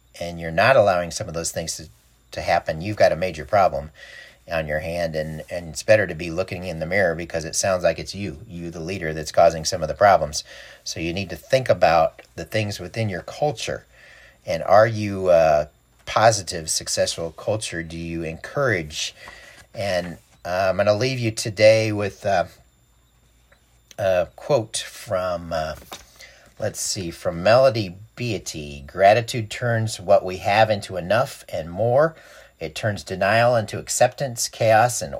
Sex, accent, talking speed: male, American, 170 wpm